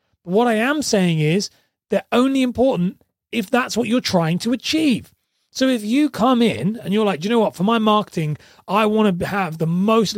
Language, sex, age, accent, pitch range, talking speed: English, male, 30-49, British, 175-230 Hz, 205 wpm